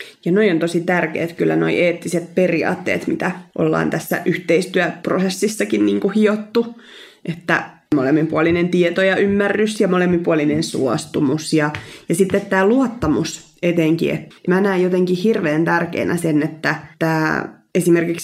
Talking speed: 130 wpm